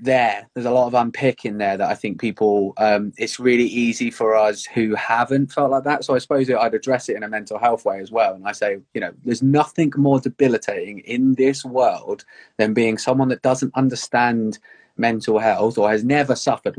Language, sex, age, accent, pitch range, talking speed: English, male, 20-39, British, 110-135 Hz, 215 wpm